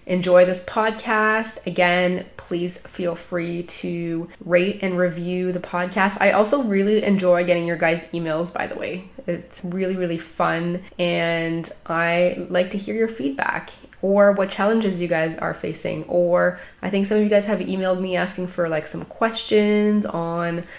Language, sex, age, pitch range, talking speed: English, female, 20-39, 170-195 Hz, 165 wpm